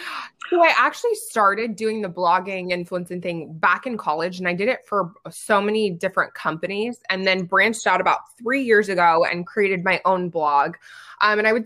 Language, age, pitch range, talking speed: English, 20-39, 170-205 Hz, 195 wpm